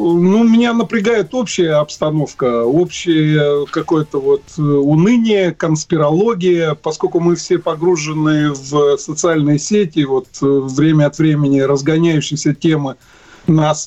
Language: Russian